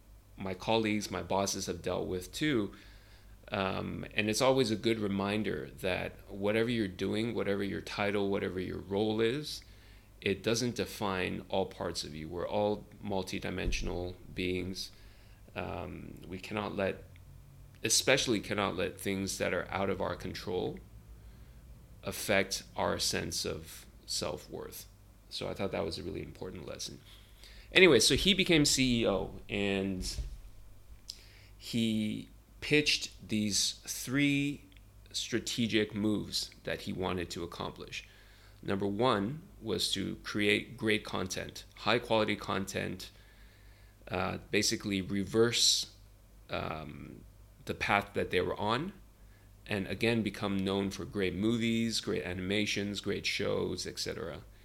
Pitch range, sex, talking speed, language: 95-105 Hz, male, 125 wpm, English